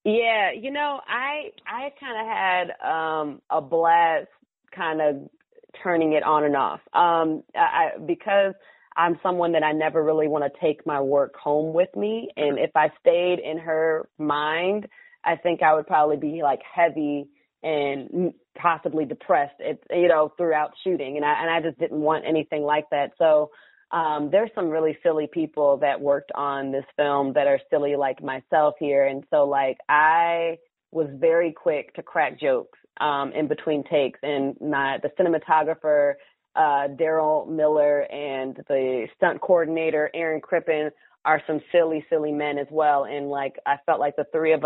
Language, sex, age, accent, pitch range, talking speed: English, female, 30-49, American, 150-170 Hz, 170 wpm